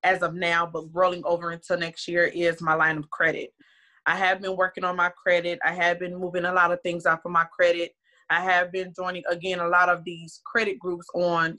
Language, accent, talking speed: English, American, 235 wpm